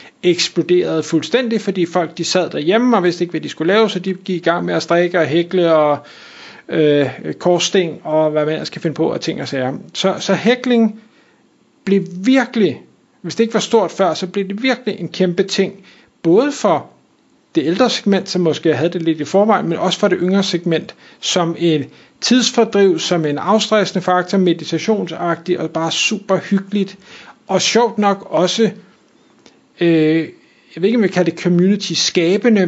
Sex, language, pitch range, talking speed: male, Danish, 170-210 Hz, 180 wpm